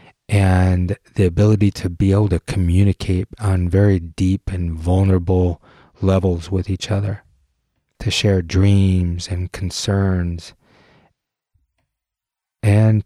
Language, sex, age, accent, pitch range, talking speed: English, male, 30-49, American, 90-105 Hz, 105 wpm